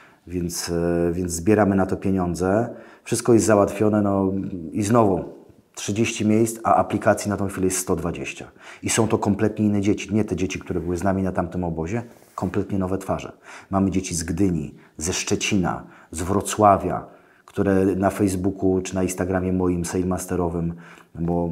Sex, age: male, 30-49